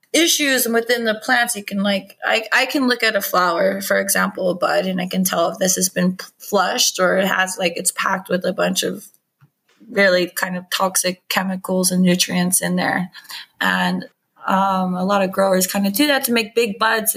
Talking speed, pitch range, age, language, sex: 205 wpm, 185-230 Hz, 20-39, Hebrew, female